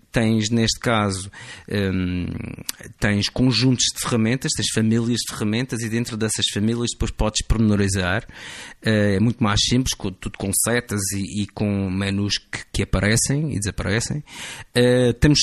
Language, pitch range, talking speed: Portuguese, 105-125 Hz, 135 wpm